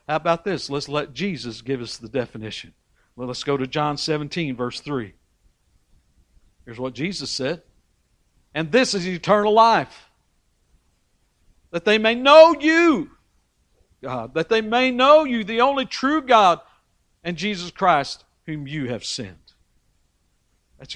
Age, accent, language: 60-79, American, English